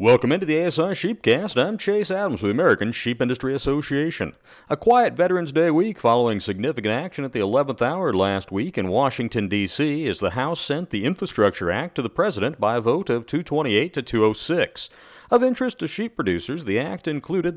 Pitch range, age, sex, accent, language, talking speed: 105-150 Hz, 40-59, male, American, English, 190 wpm